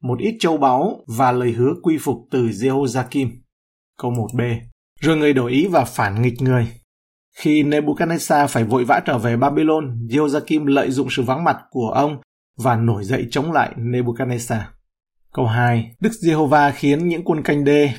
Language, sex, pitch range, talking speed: Vietnamese, male, 120-150 Hz, 175 wpm